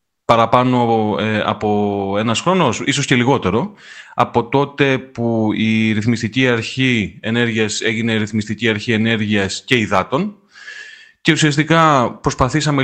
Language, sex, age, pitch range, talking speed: Greek, male, 30-49, 105-130 Hz, 110 wpm